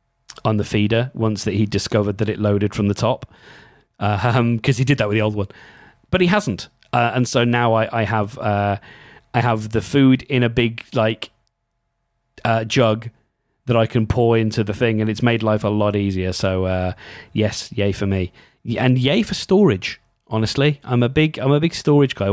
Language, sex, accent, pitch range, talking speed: English, male, British, 100-120 Hz, 205 wpm